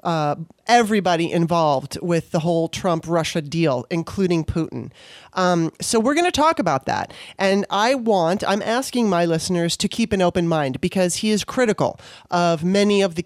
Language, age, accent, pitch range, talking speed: English, 30-49, American, 170-205 Hz, 170 wpm